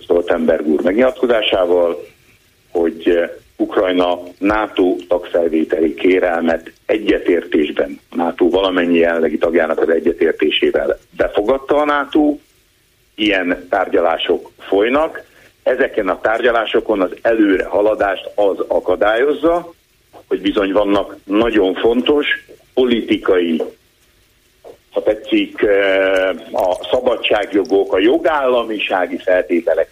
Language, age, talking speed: Hungarian, 60-79, 85 wpm